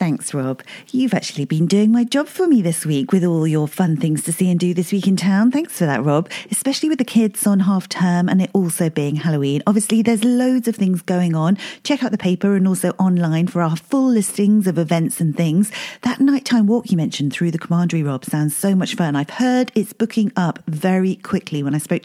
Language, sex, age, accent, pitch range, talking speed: English, female, 40-59, British, 170-235 Hz, 235 wpm